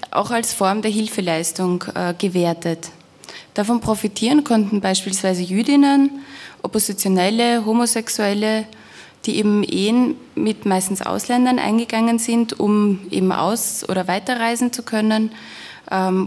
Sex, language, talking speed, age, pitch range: female, German, 110 wpm, 20-39, 180-220 Hz